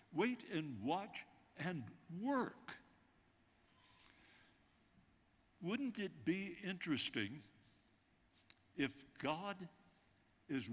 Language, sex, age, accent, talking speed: English, male, 60-79, American, 65 wpm